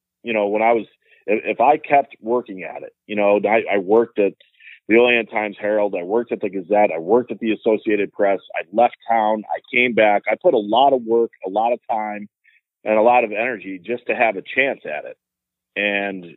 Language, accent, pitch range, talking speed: English, American, 100-120 Hz, 225 wpm